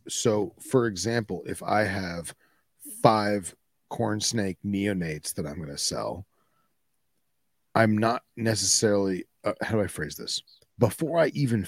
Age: 40-59